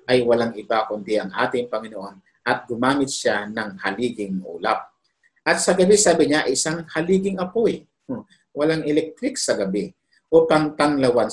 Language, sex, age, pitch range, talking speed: Filipino, male, 50-69, 120-160 Hz, 145 wpm